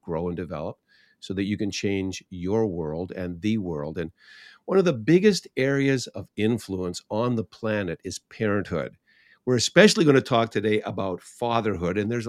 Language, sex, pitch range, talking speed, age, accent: English, male, 90-115 Hz, 175 wpm, 50-69, American